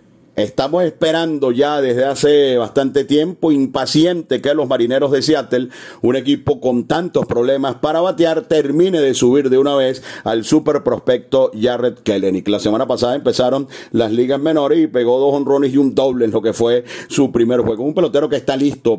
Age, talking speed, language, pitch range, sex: 40-59, 180 wpm, Spanish, 120-155 Hz, male